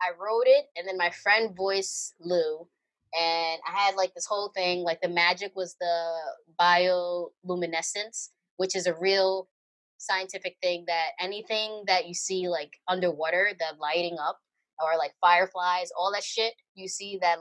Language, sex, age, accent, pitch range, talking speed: English, female, 20-39, American, 165-210 Hz, 160 wpm